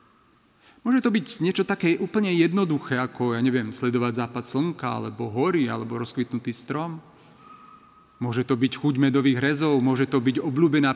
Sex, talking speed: male, 155 wpm